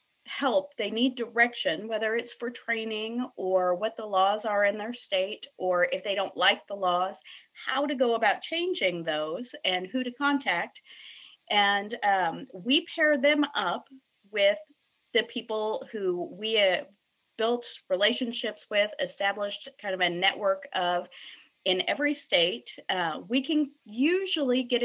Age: 30-49